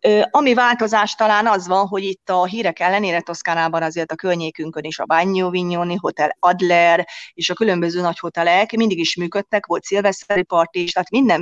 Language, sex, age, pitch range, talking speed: Hungarian, female, 30-49, 165-200 Hz, 170 wpm